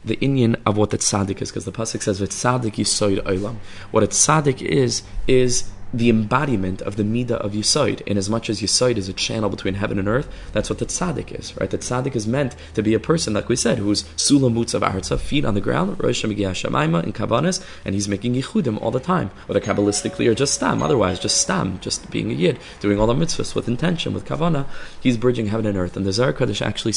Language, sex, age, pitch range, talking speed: English, male, 20-39, 100-120 Hz, 230 wpm